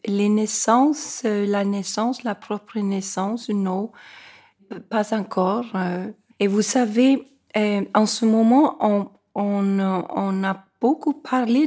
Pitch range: 195-235 Hz